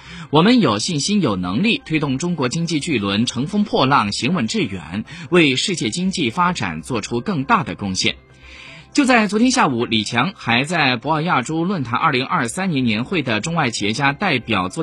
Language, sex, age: Chinese, male, 20-39